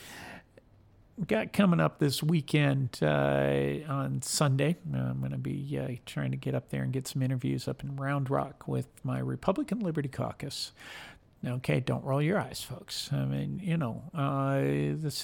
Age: 50-69